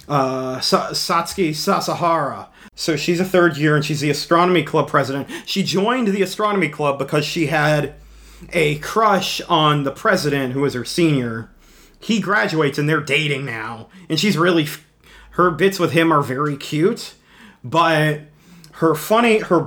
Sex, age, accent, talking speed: male, 30-49, American, 155 wpm